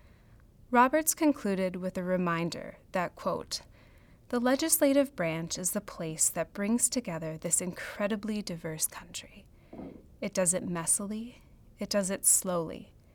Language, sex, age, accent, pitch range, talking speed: English, female, 30-49, American, 165-210 Hz, 130 wpm